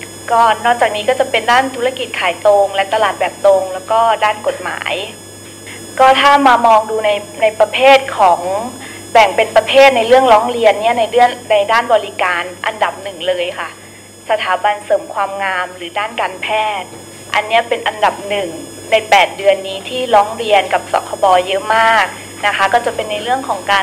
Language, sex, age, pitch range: Thai, female, 20-39, 195-245 Hz